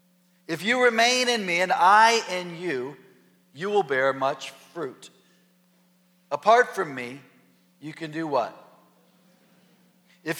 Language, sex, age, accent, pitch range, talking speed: English, male, 40-59, American, 165-200 Hz, 125 wpm